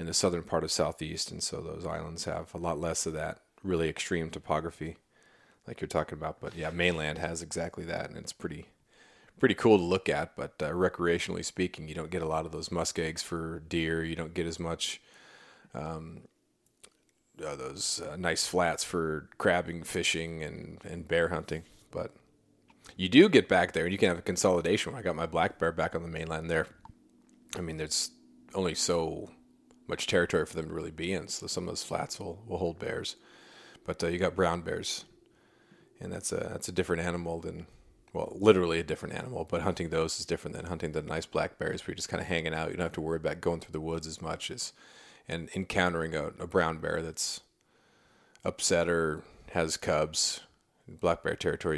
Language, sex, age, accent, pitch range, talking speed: English, male, 30-49, American, 80-85 Hz, 205 wpm